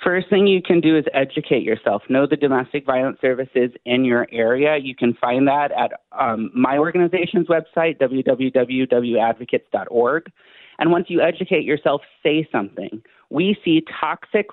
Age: 30-49